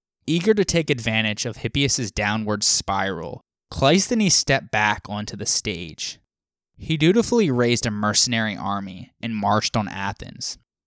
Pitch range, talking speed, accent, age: 105-135 Hz, 130 wpm, American, 20-39